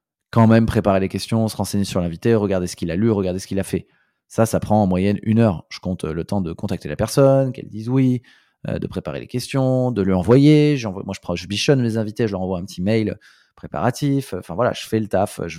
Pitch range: 95-110 Hz